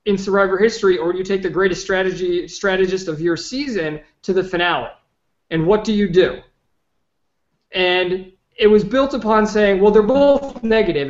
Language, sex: English, male